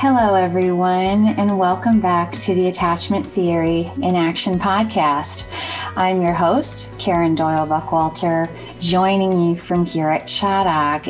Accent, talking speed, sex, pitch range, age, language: American, 130 wpm, female, 175-230 Hz, 30-49, English